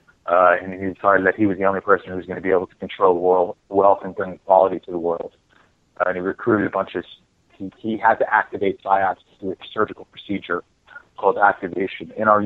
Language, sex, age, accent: English, male, 30-49, American